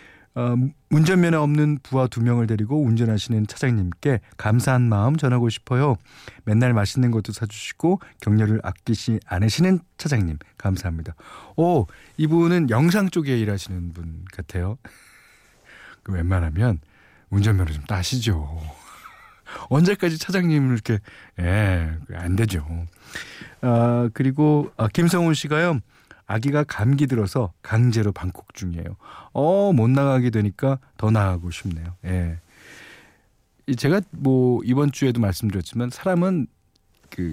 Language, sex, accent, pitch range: Korean, male, native, 90-140 Hz